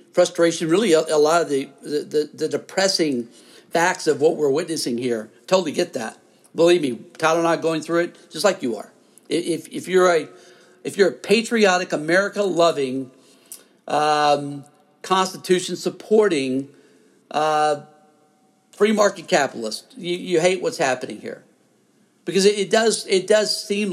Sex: male